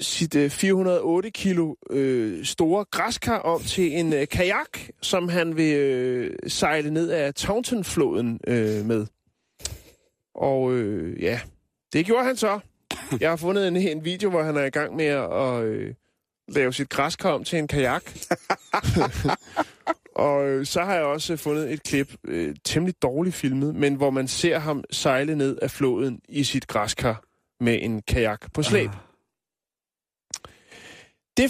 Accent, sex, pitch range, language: native, male, 135-180 Hz, Danish